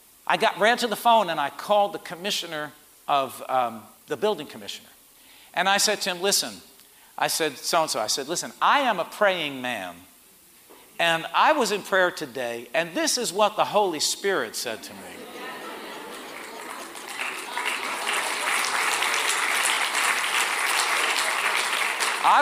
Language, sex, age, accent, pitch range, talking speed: English, male, 50-69, American, 150-220 Hz, 130 wpm